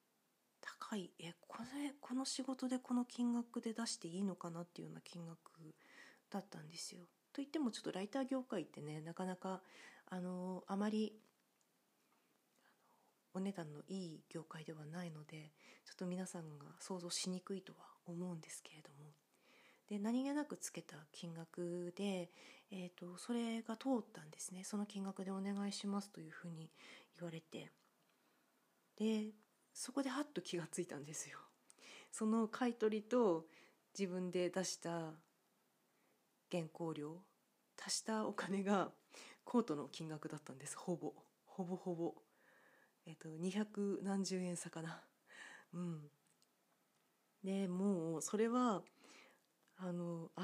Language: Japanese